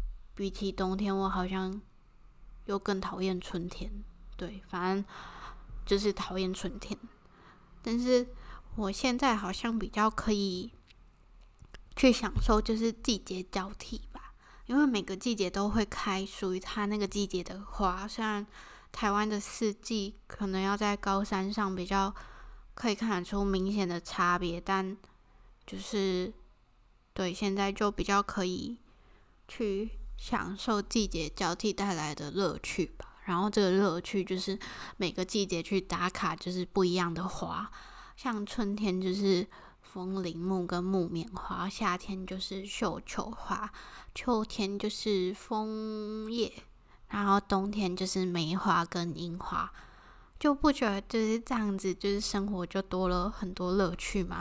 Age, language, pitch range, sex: 20-39, Chinese, 185-210 Hz, female